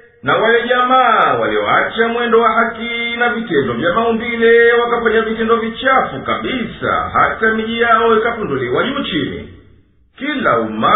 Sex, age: male, 50-69